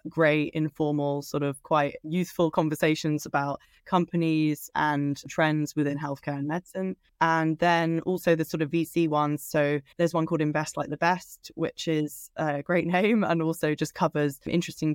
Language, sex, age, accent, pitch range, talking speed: English, female, 20-39, British, 145-165 Hz, 165 wpm